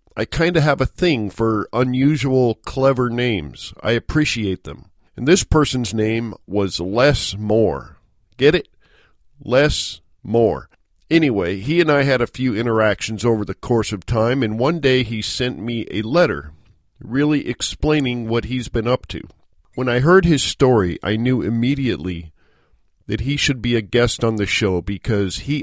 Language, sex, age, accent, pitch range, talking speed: English, male, 50-69, American, 105-140 Hz, 165 wpm